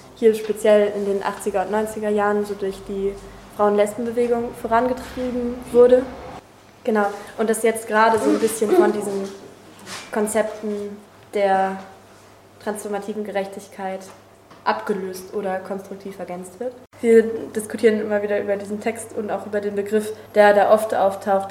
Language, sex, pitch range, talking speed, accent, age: German, female, 195-215 Hz, 135 wpm, German, 10-29